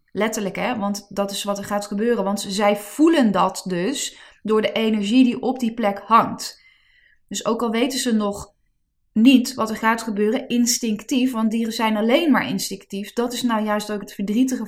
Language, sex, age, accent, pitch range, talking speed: Dutch, female, 20-39, Dutch, 200-240 Hz, 190 wpm